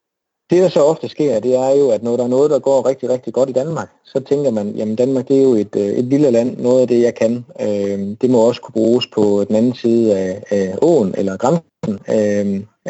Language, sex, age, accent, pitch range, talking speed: Danish, male, 30-49, native, 110-135 Hz, 250 wpm